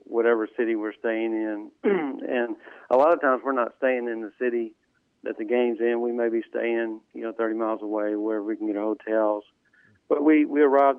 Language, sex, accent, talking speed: English, male, American, 210 wpm